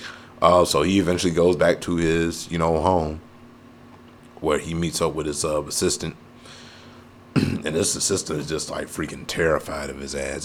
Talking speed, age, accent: 180 wpm, 30-49, American